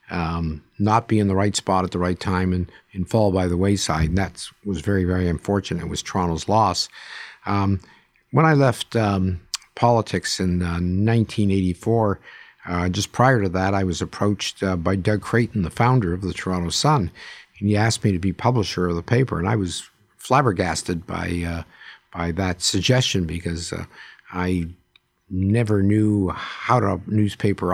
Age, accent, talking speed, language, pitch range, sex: 50-69, American, 175 wpm, English, 90-110 Hz, male